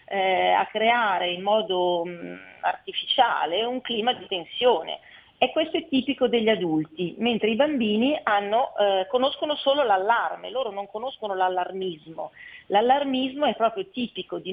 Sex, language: female, Italian